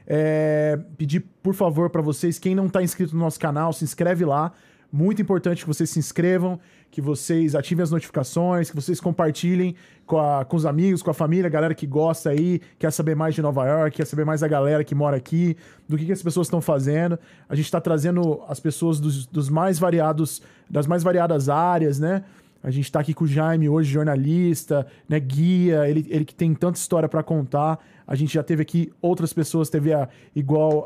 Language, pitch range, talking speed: Portuguese, 150-175 Hz, 210 wpm